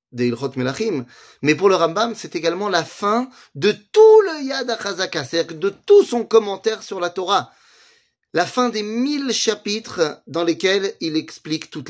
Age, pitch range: 30-49, 165-230 Hz